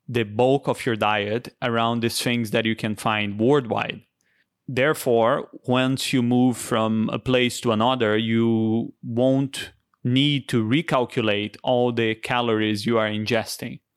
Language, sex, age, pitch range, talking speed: English, male, 20-39, 115-135 Hz, 140 wpm